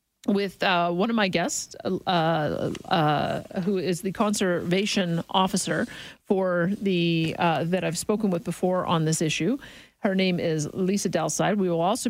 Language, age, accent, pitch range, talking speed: English, 50-69, American, 175-225 Hz, 160 wpm